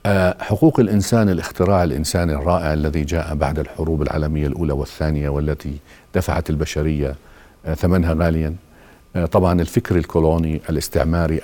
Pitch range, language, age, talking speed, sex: 80-100 Hz, Arabic, 50-69, 110 wpm, male